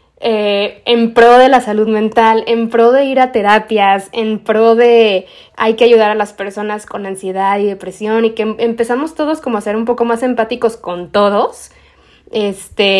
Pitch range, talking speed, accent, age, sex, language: 205-235 Hz, 190 wpm, Mexican, 20-39, female, Spanish